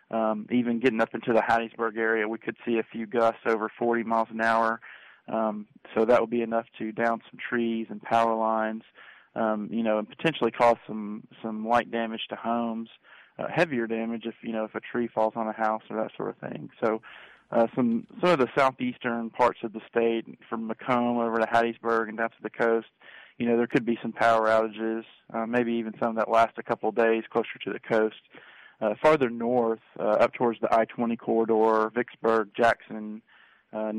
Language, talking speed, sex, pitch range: English, 205 wpm, male, 110-120 Hz